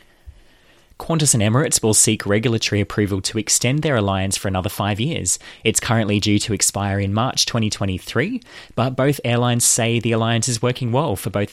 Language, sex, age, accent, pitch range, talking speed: English, male, 20-39, Australian, 95-115 Hz, 175 wpm